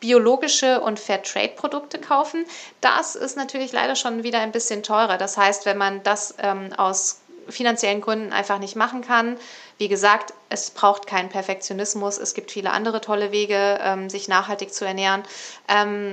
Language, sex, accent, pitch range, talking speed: German, female, German, 200-235 Hz, 165 wpm